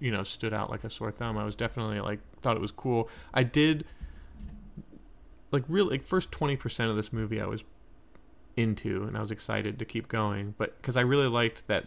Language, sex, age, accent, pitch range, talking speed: English, male, 30-49, American, 105-125 Hz, 210 wpm